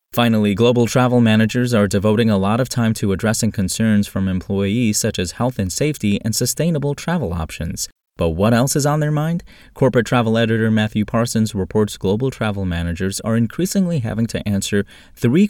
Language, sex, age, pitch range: English, male, 20-39, 90-120 Hz